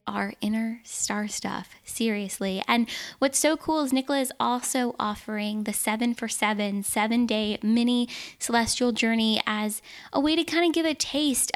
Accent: American